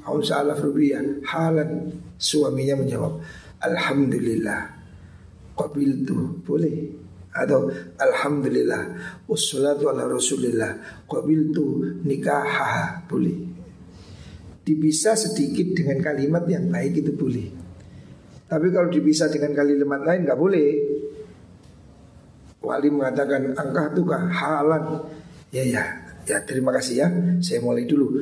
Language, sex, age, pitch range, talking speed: Indonesian, male, 50-69, 140-175 Hz, 100 wpm